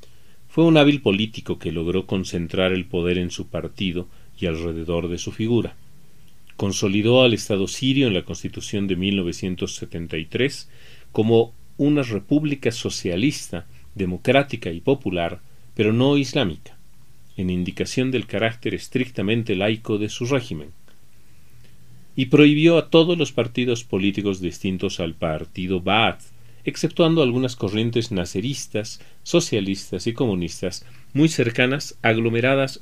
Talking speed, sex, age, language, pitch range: 120 wpm, male, 40-59, Spanish, 95-125 Hz